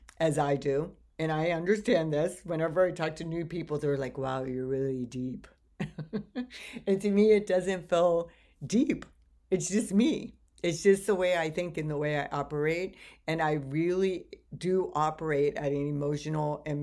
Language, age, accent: English, 50-69, American